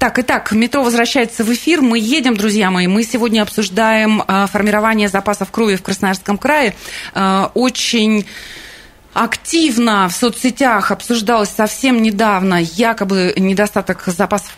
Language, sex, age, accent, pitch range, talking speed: Russian, female, 30-49, native, 185-235 Hz, 120 wpm